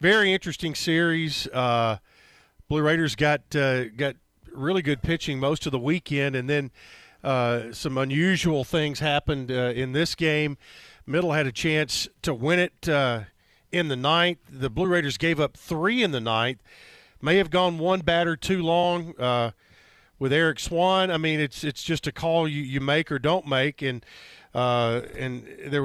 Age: 50-69